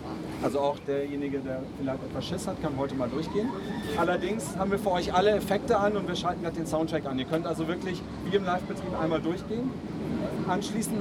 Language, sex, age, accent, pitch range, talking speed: German, male, 40-59, German, 160-195 Hz, 200 wpm